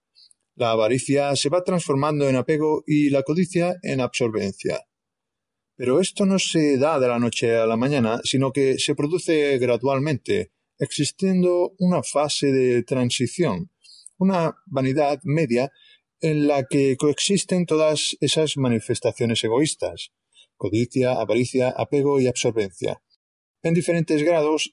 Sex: male